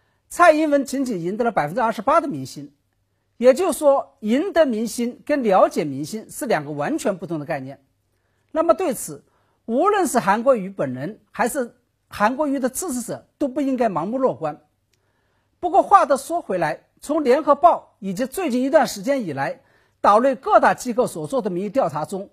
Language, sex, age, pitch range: Chinese, male, 50-69, 205-305 Hz